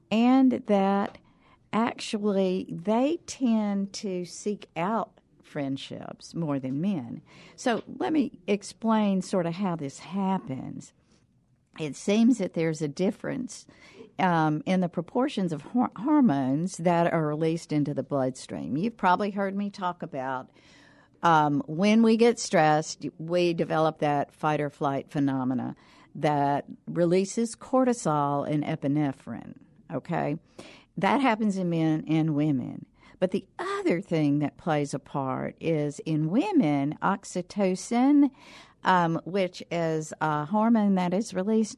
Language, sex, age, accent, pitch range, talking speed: English, female, 50-69, American, 155-210 Hz, 125 wpm